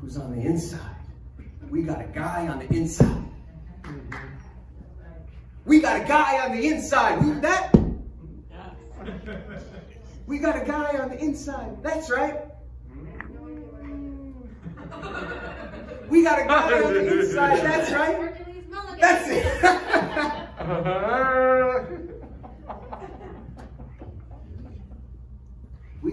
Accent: American